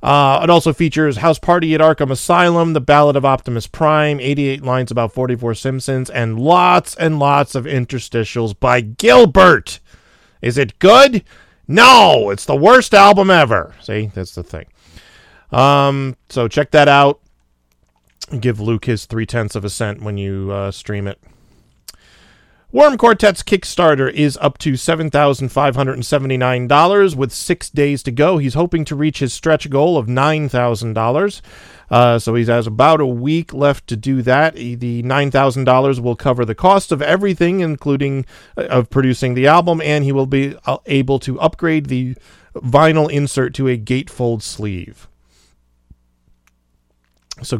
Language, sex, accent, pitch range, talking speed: English, male, American, 120-155 Hz, 150 wpm